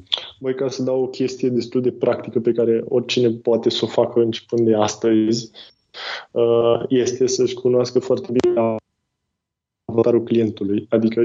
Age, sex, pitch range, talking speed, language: 20-39, male, 115-130 Hz, 145 wpm, Romanian